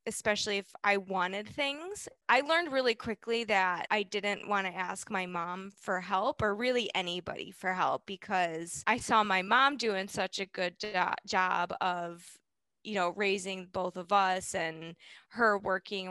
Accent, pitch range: American, 185-220 Hz